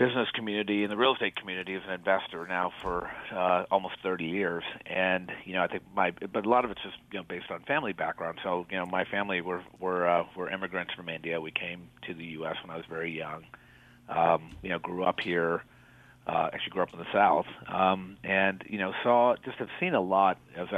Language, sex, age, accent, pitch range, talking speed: English, male, 40-59, American, 85-105 Hz, 230 wpm